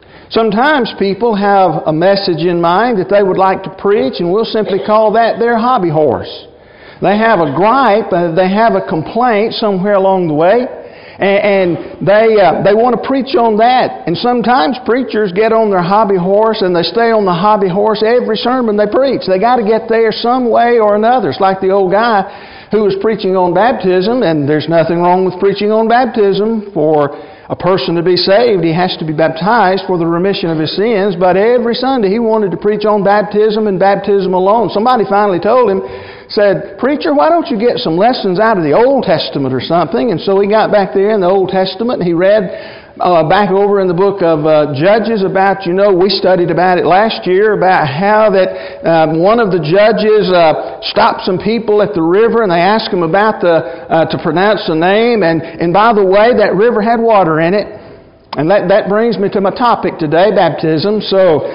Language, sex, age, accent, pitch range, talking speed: English, male, 50-69, American, 180-220 Hz, 210 wpm